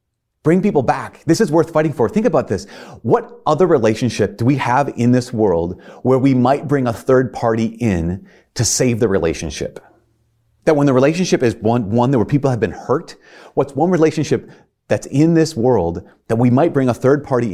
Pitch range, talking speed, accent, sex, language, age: 95-135 Hz, 200 wpm, American, male, English, 30-49